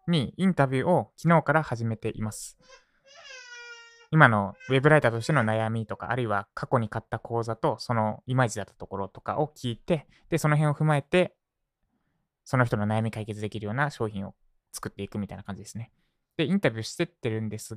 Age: 20-39